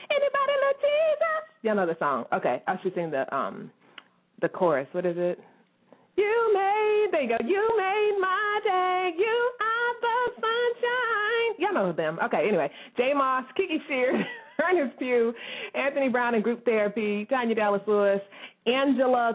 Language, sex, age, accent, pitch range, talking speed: English, female, 30-49, American, 180-275 Hz, 155 wpm